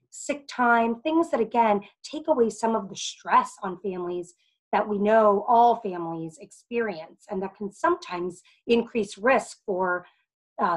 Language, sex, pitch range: English, female, 185-225 Hz